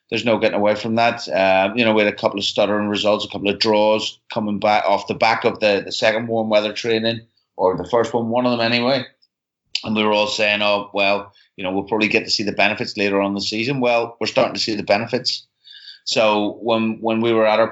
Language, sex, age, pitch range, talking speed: English, male, 30-49, 100-115 Hz, 255 wpm